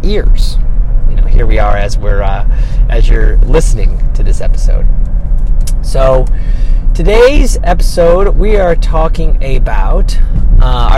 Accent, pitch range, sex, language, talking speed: American, 100-145 Hz, male, English, 125 wpm